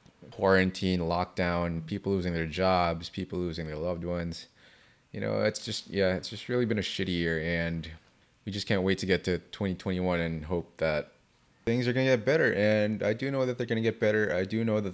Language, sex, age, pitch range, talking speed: English, male, 20-39, 85-100 Hz, 220 wpm